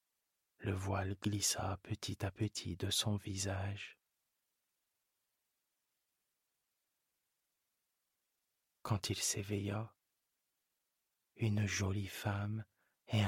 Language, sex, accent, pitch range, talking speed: French, male, French, 100-110 Hz, 70 wpm